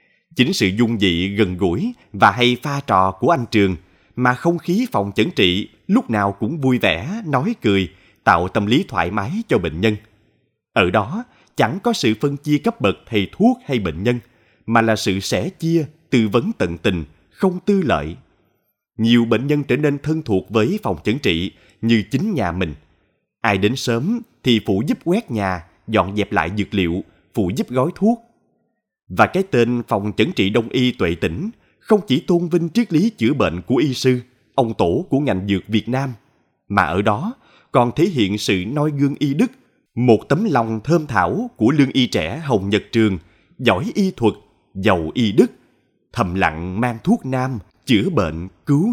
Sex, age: male, 20-39